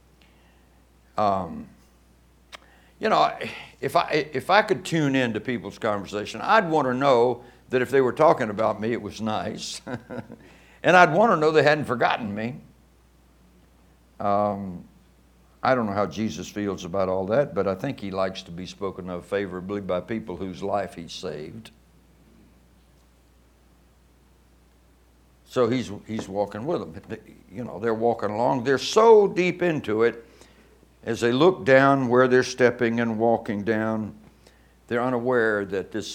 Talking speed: 150 wpm